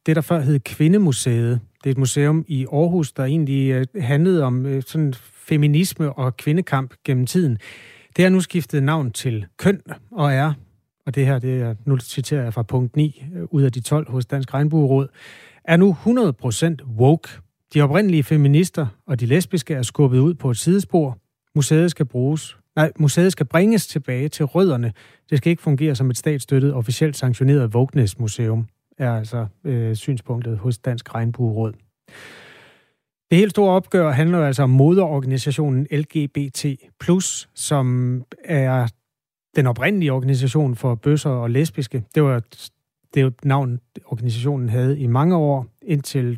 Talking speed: 155 wpm